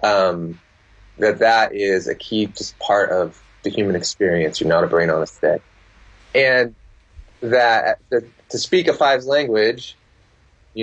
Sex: male